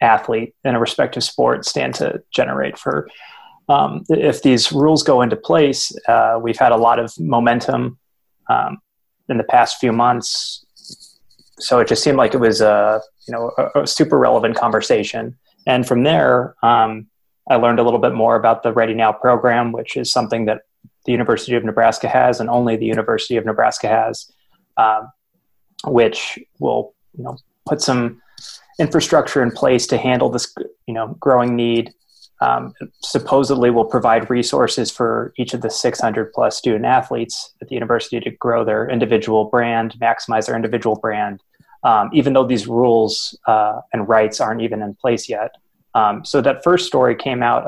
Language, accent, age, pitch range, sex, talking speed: English, American, 20-39, 110-125 Hz, male, 170 wpm